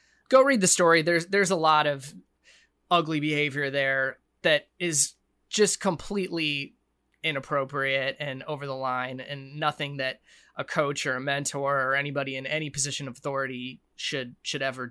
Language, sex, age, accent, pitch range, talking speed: English, male, 20-39, American, 135-165 Hz, 155 wpm